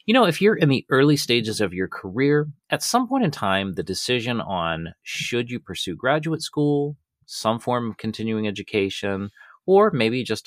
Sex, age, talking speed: male, 30-49, 185 wpm